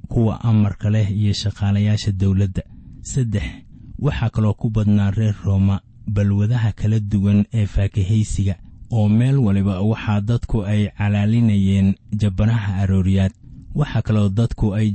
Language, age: Hindi, 30-49